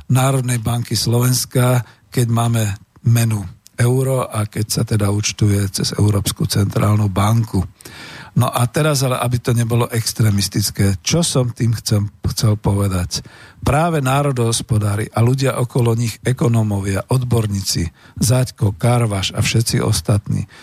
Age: 50-69